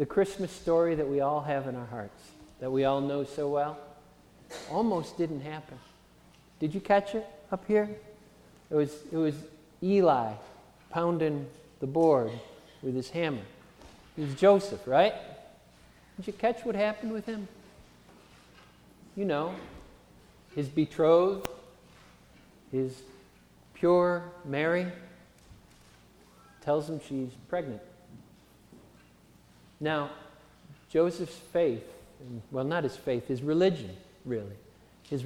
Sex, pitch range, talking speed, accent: male, 125-175 Hz, 115 wpm, American